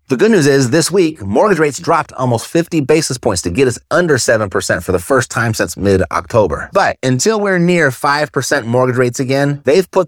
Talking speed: 200 wpm